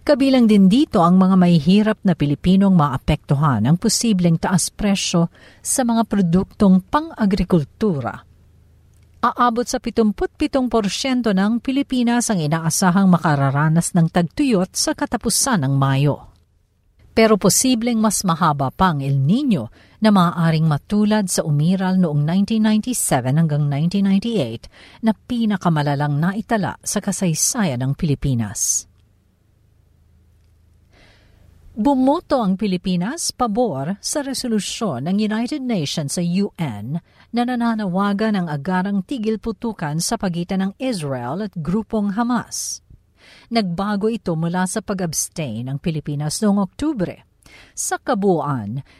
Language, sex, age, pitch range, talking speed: Filipino, female, 50-69, 145-225 Hz, 110 wpm